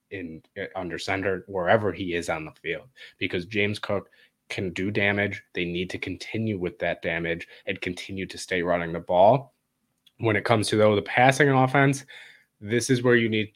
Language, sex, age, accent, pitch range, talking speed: English, male, 20-39, American, 95-120 Hz, 190 wpm